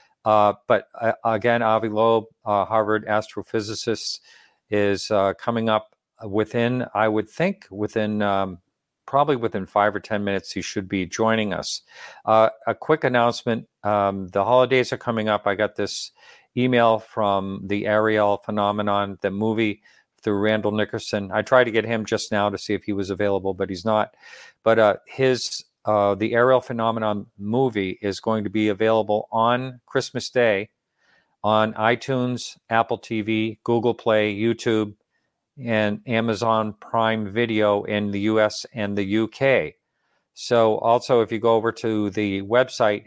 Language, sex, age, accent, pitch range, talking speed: English, male, 50-69, American, 100-115 Hz, 155 wpm